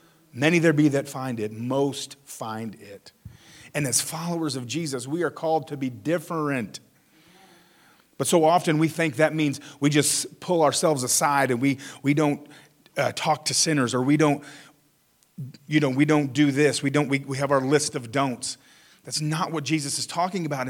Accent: American